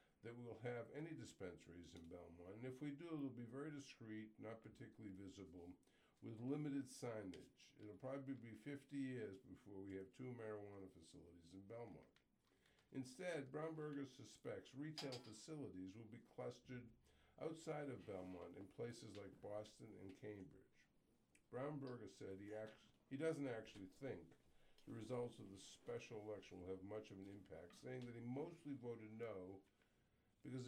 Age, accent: 60-79, American